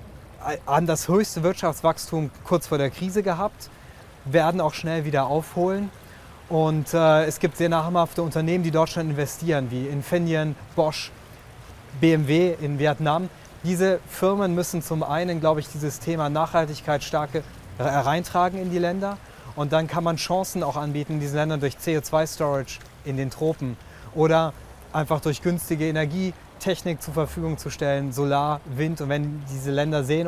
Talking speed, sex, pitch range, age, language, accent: 150 wpm, male, 145-165 Hz, 30-49, German, German